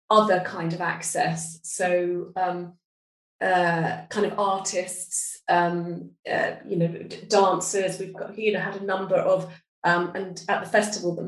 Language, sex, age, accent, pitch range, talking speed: English, female, 30-49, British, 175-190 Hz, 155 wpm